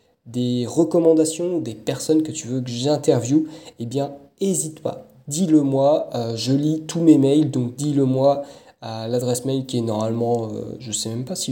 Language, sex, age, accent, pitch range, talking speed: French, male, 20-39, French, 115-150 Hz, 180 wpm